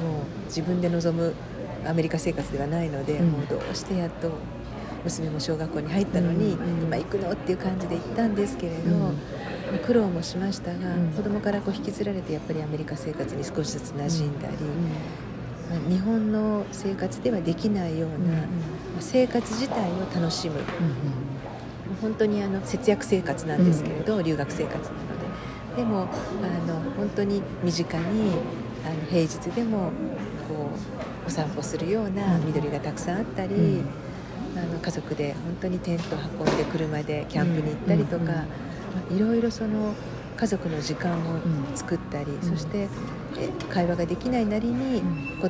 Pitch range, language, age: 155-195 Hz, Japanese, 50-69